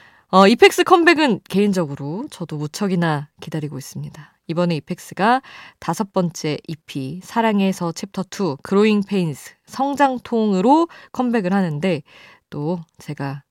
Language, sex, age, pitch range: Korean, female, 20-39, 150-210 Hz